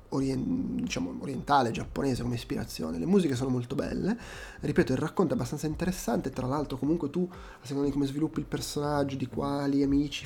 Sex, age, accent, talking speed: male, 20-39, native, 175 wpm